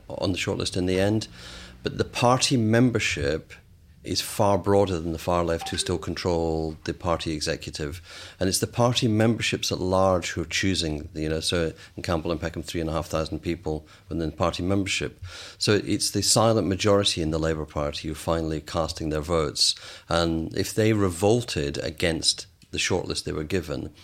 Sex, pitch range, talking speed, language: male, 80-100 Hz, 175 wpm, English